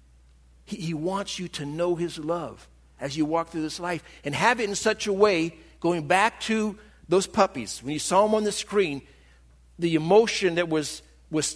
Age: 50-69